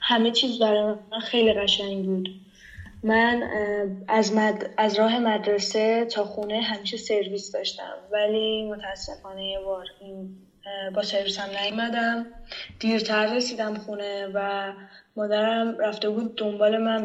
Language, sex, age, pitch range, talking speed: Persian, female, 10-29, 200-230 Hz, 125 wpm